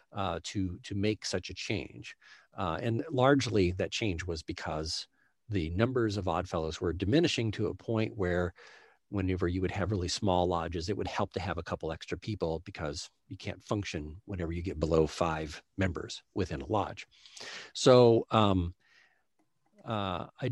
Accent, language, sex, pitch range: American, English, male, 90-110 Hz